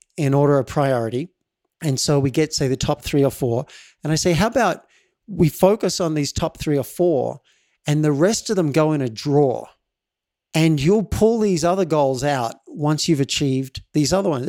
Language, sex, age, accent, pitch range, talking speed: English, male, 50-69, Australian, 130-165 Hz, 205 wpm